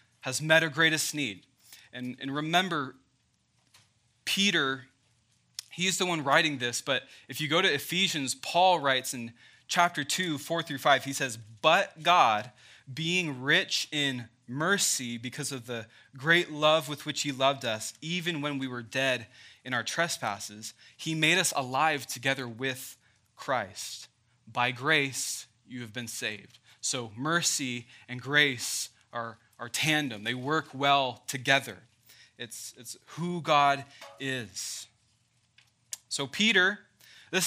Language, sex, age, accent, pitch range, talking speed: English, male, 20-39, American, 125-165 Hz, 140 wpm